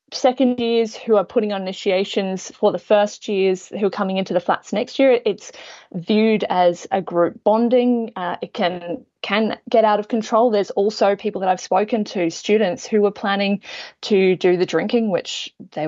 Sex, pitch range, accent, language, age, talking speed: female, 185-215 Hz, Australian, English, 20-39, 190 wpm